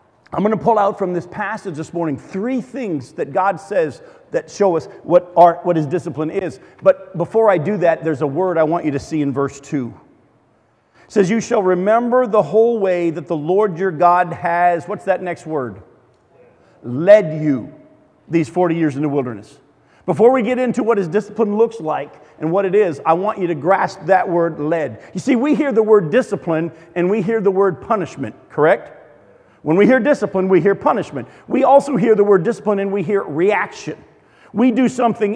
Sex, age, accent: male, 50-69, American